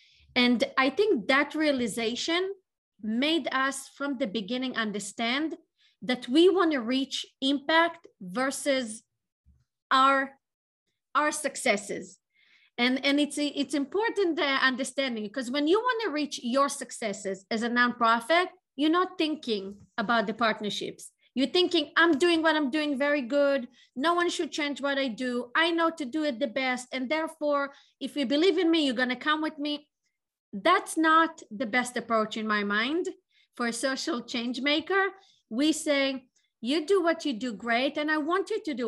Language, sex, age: English, female, 30-49